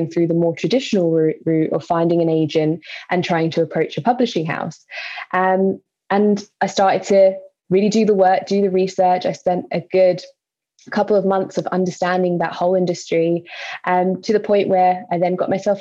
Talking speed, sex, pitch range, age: 185 wpm, female, 170-200 Hz, 10-29